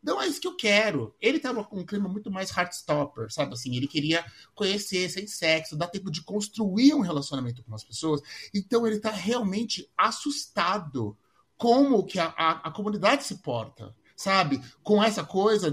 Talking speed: 185 wpm